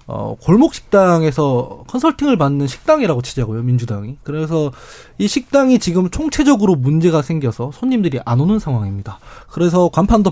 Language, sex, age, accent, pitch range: Korean, male, 20-39, native, 135-200 Hz